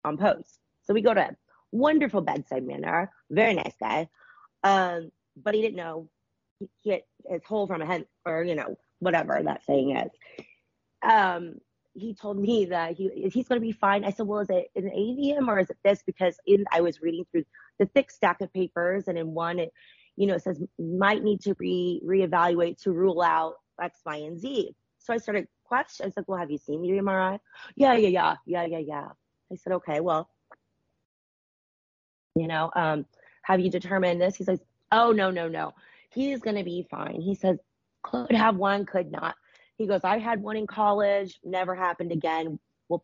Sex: female